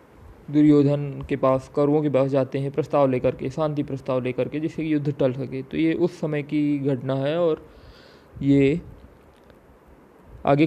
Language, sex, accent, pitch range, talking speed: Hindi, male, native, 130-150 Hz, 170 wpm